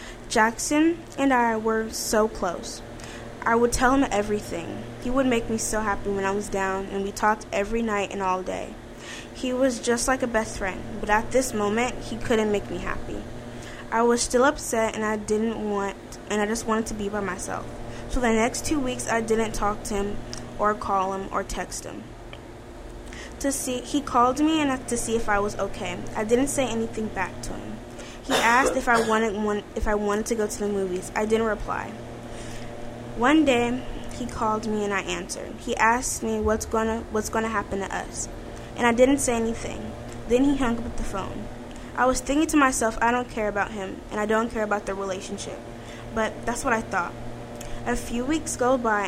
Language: English